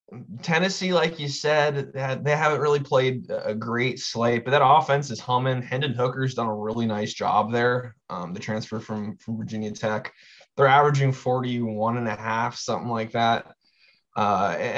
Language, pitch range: English, 110-140 Hz